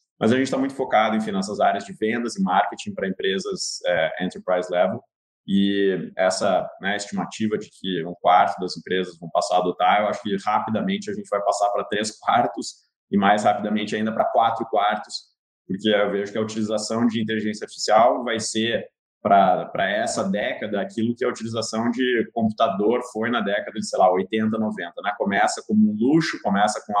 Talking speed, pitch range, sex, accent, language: 190 wpm, 105-150 Hz, male, Brazilian, Portuguese